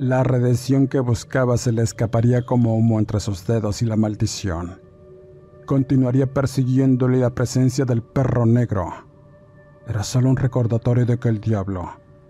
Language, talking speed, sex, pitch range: Spanish, 145 wpm, male, 105-130 Hz